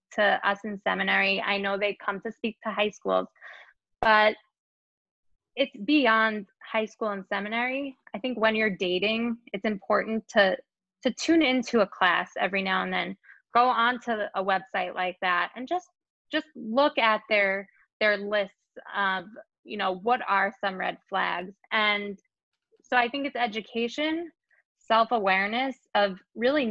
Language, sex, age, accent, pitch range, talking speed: English, female, 20-39, American, 200-235 Hz, 155 wpm